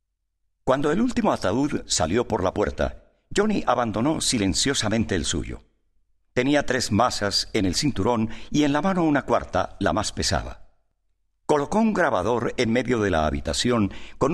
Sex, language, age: male, Spanish, 50-69